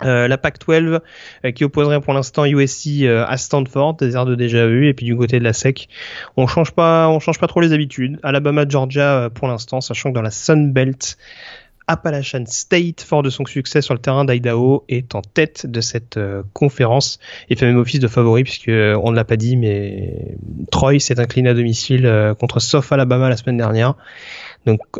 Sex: male